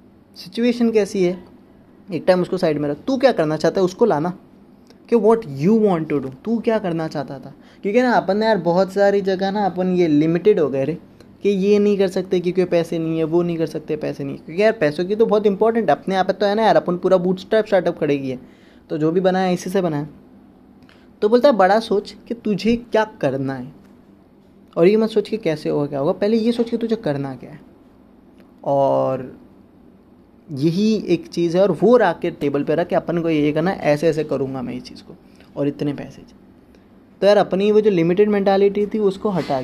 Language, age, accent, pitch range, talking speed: Hindi, 20-39, native, 160-210 Hz, 225 wpm